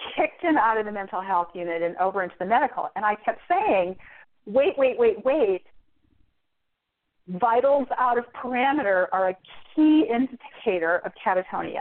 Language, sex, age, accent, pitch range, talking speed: English, female, 40-59, American, 180-235 Hz, 160 wpm